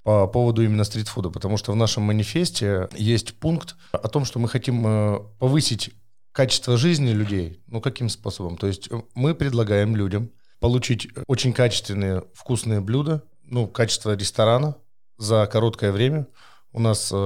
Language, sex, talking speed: Russian, male, 145 wpm